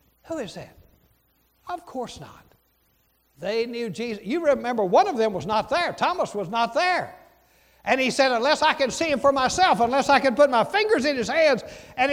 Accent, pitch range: American, 220-320 Hz